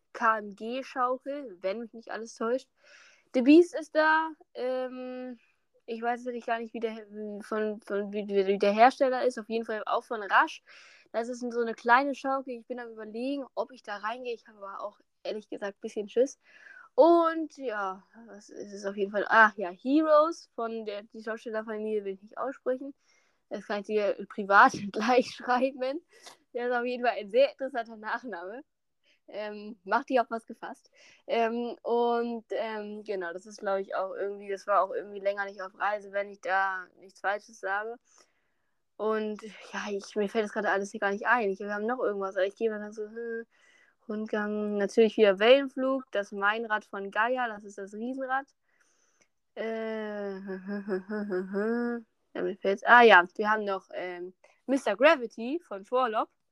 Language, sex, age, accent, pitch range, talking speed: German, female, 10-29, German, 205-250 Hz, 175 wpm